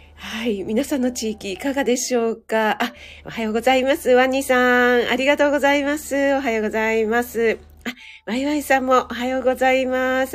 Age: 40-59